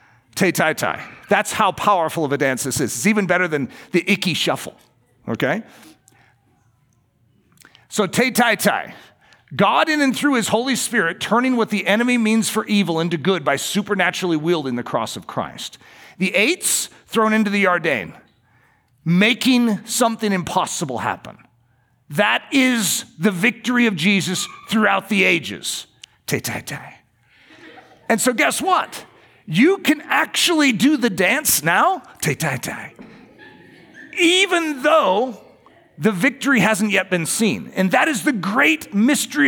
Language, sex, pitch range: English, male, 180-265 Hz